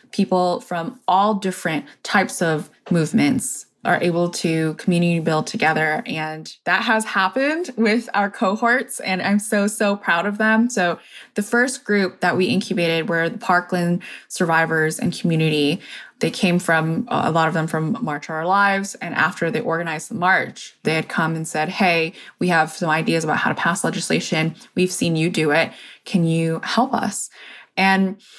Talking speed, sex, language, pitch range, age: 175 wpm, female, English, 165-225 Hz, 20-39